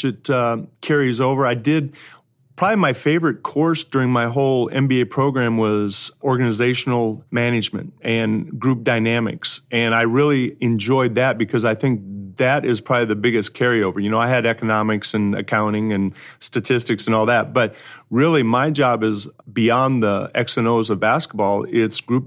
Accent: American